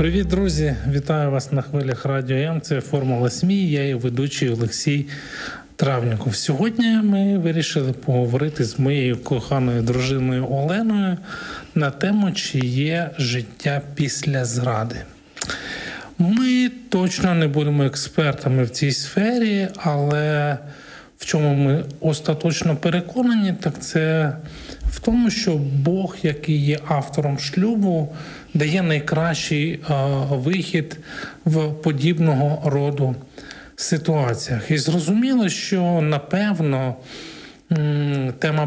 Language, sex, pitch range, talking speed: Ukrainian, male, 140-175 Hz, 110 wpm